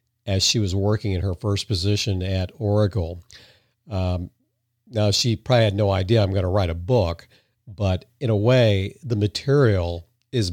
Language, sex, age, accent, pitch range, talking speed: English, male, 50-69, American, 100-115 Hz, 170 wpm